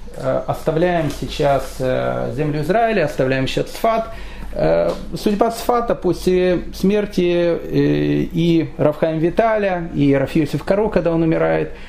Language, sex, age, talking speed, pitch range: Russian, male, 30-49, 100 wpm, 150-195 Hz